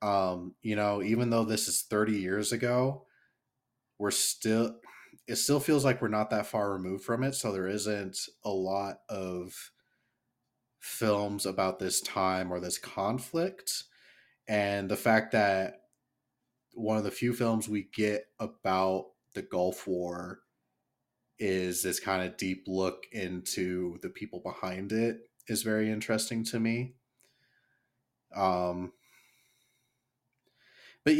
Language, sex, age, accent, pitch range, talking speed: English, male, 30-49, American, 95-125 Hz, 135 wpm